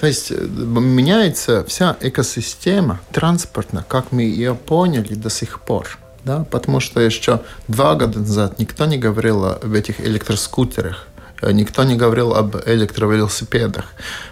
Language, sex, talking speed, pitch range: Russian, male, 130 wpm, 105-130 Hz